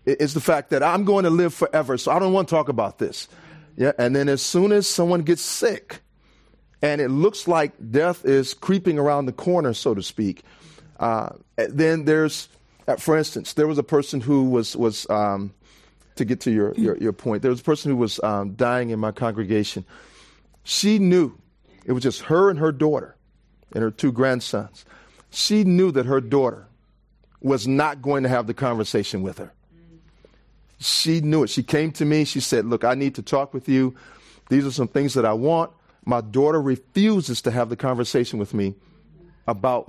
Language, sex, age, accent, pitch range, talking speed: English, male, 40-59, American, 125-165 Hz, 195 wpm